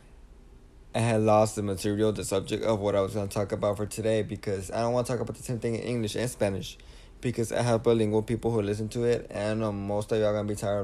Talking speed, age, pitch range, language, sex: 260 wpm, 20-39, 100-115 Hz, English, male